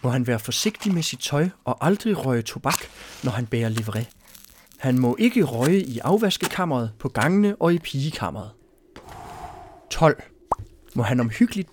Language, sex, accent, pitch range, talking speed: Danish, male, native, 120-195 Hz, 155 wpm